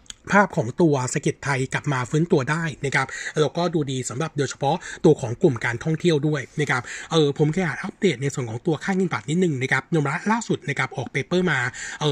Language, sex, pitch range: Thai, male, 140-180 Hz